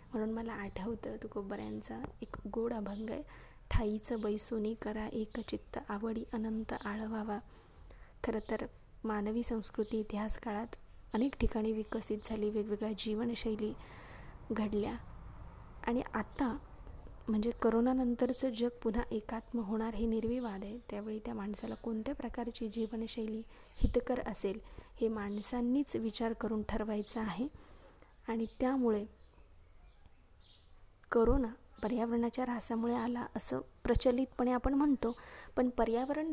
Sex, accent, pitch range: female, native, 215-240 Hz